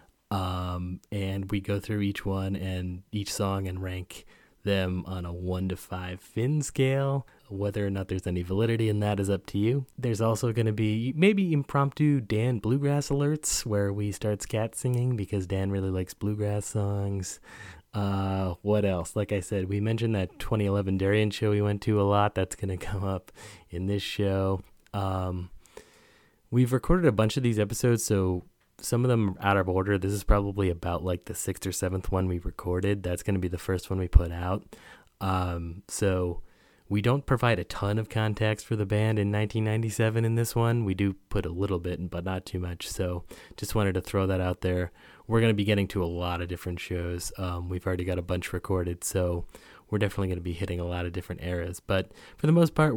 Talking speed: 210 wpm